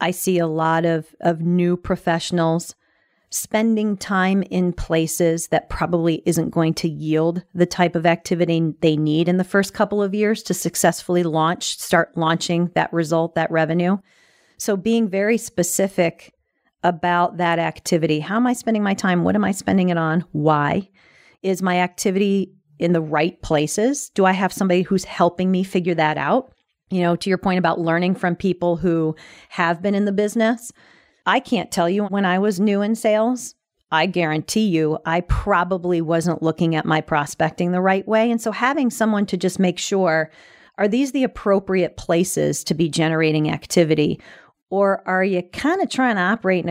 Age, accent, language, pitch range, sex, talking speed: 40-59, American, English, 165-195 Hz, female, 180 wpm